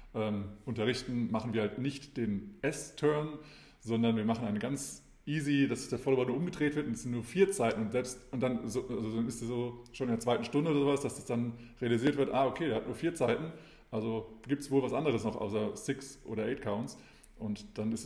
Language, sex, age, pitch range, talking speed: German, male, 20-39, 110-135 Hz, 230 wpm